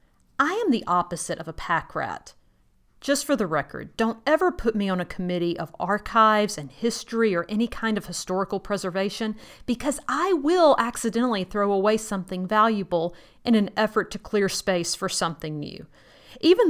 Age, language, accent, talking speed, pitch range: 40-59, English, American, 170 wpm, 175-245 Hz